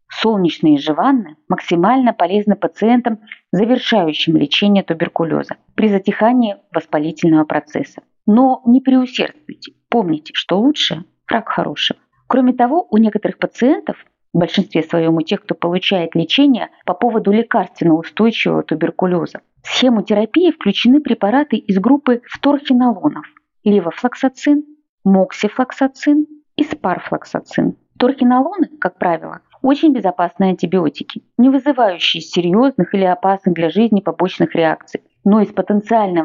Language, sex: Russian, female